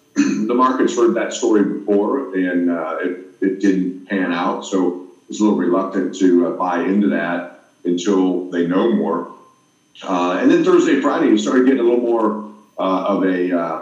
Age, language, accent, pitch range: 40-59, English, American, 95-120 Hz